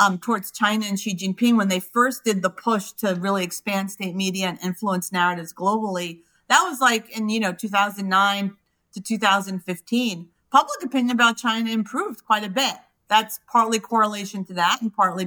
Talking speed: 175 wpm